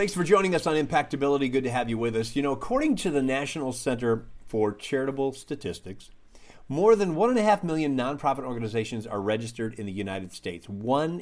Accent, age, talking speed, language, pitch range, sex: American, 40-59, 205 wpm, English, 115-155 Hz, male